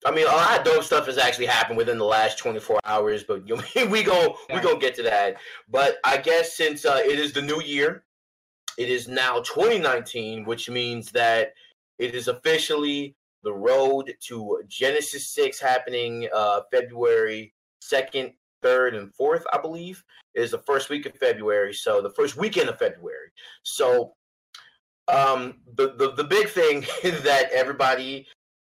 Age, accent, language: 30-49, American, English